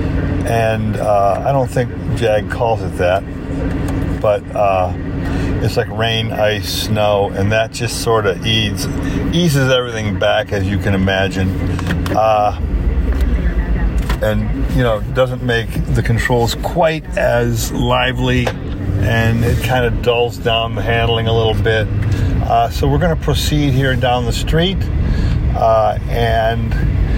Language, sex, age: English, male, 40-59